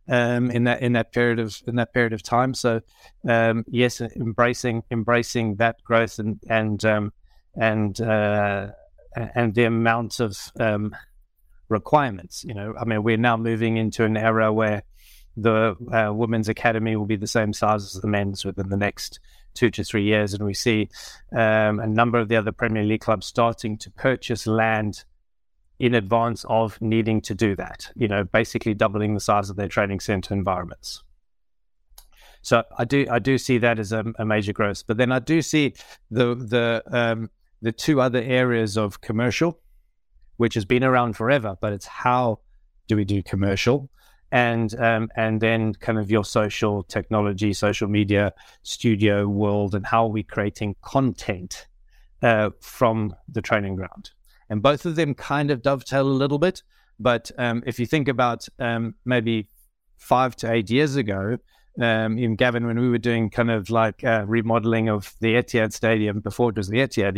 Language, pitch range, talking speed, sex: English, 105-120 Hz, 180 wpm, male